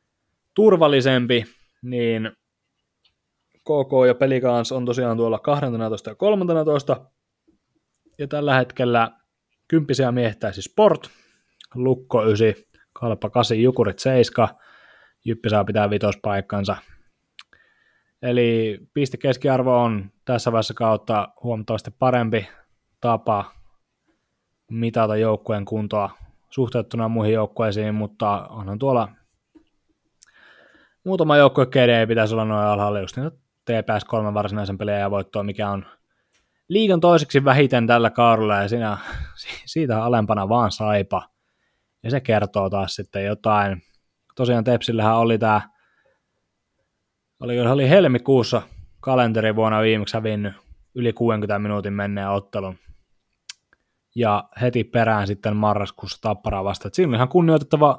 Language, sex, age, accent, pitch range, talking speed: Finnish, male, 20-39, native, 105-125 Hz, 105 wpm